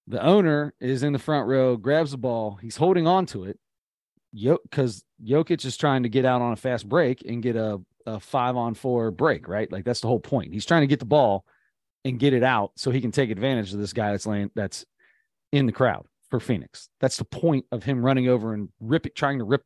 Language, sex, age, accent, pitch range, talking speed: English, male, 30-49, American, 115-145 Hz, 235 wpm